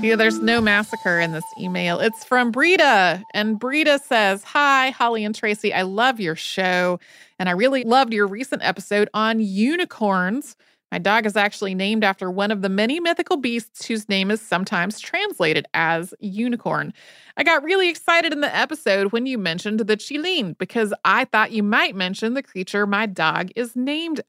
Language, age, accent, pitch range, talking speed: English, 30-49, American, 190-245 Hz, 180 wpm